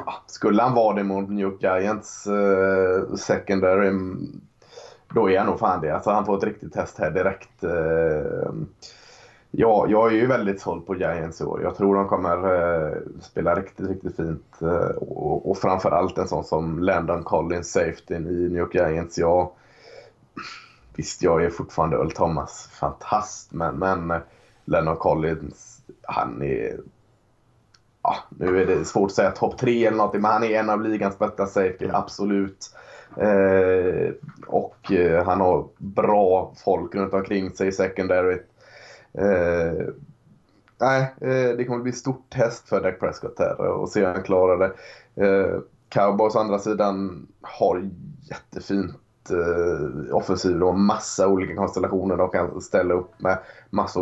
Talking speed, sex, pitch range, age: 150 wpm, male, 90-110 Hz, 20-39